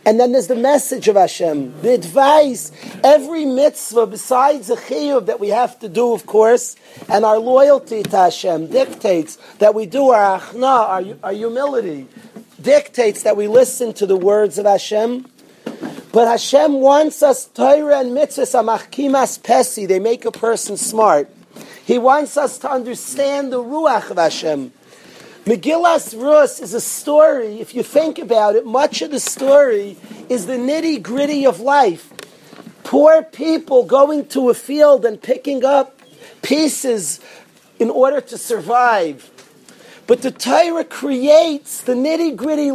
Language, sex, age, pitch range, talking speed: English, male, 40-59, 225-285 Hz, 145 wpm